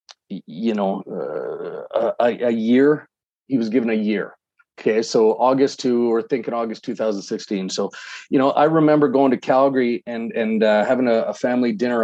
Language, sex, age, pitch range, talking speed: English, male, 40-59, 110-135 Hz, 185 wpm